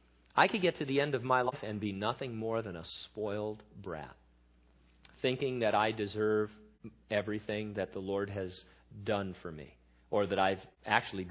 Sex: male